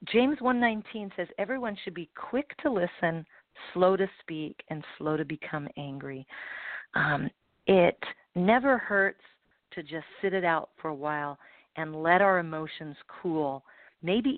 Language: English